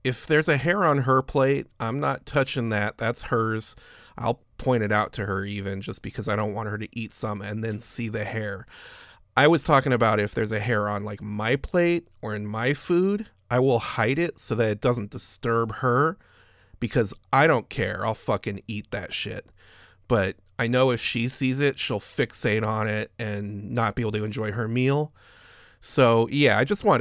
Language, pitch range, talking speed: English, 105-135 Hz, 205 wpm